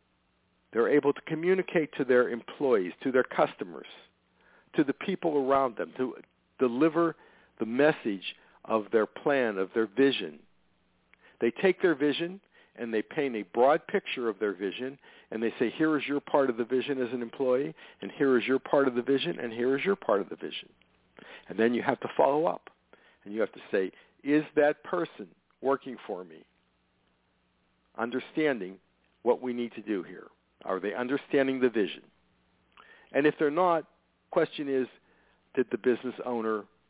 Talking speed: 175 wpm